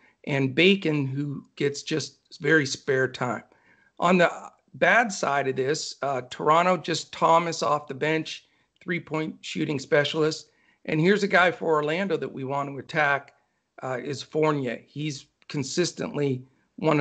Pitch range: 140-170 Hz